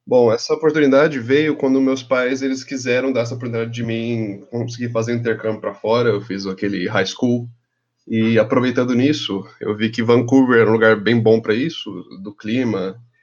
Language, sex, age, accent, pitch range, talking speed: Portuguese, male, 20-39, Brazilian, 110-150 Hz, 180 wpm